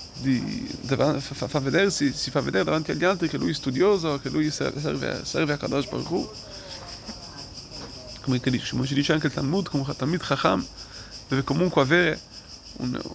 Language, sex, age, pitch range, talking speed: Italian, male, 30-49, 135-165 Hz, 185 wpm